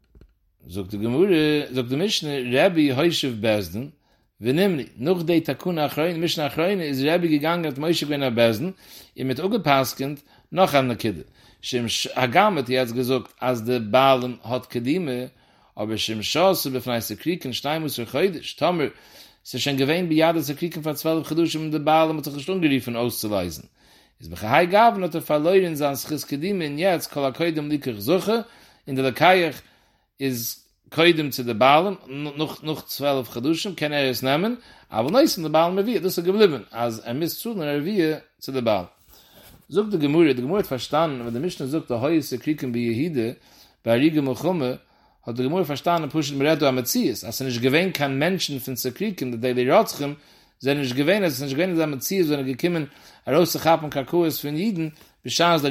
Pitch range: 125-165 Hz